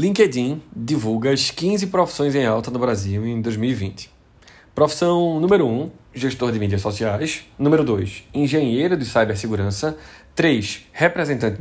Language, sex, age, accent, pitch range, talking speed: Portuguese, male, 20-39, Brazilian, 110-155 Hz, 130 wpm